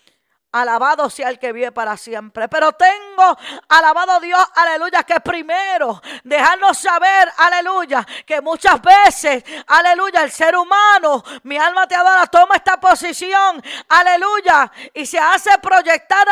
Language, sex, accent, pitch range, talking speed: Spanish, female, American, 295-375 Hz, 130 wpm